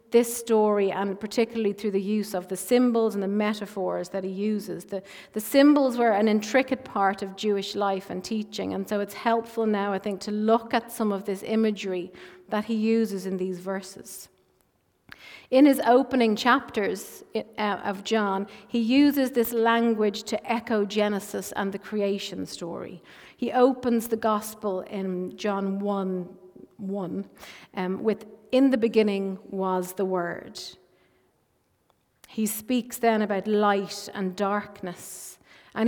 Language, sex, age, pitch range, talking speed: English, female, 40-59, 195-230 Hz, 150 wpm